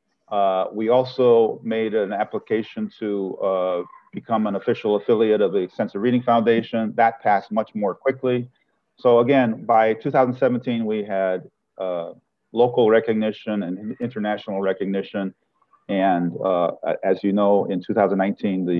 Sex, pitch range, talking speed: male, 100-120 Hz, 130 wpm